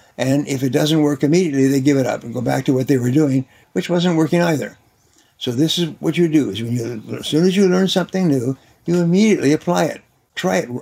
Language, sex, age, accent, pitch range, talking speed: English, male, 60-79, American, 130-165 Hz, 245 wpm